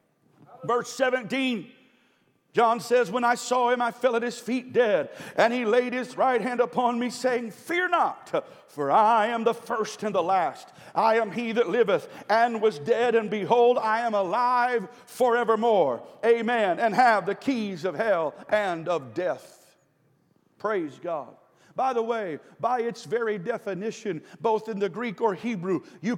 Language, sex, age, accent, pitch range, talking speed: English, male, 50-69, American, 205-245 Hz, 165 wpm